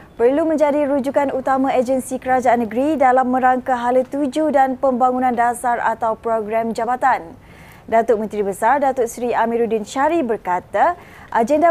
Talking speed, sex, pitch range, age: 135 wpm, female, 235-290 Hz, 20-39